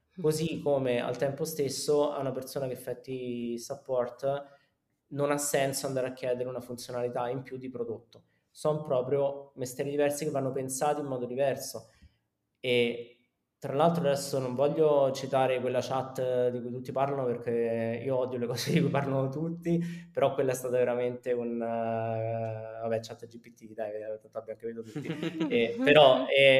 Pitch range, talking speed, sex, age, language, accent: 120-140 Hz, 150 wpm, male, 20-39, Italian, native